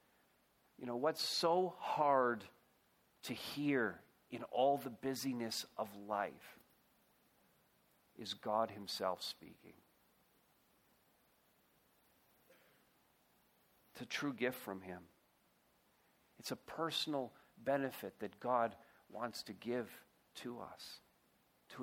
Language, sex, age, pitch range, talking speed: English, male, 50-69, 125-165 Hz, 95 wpm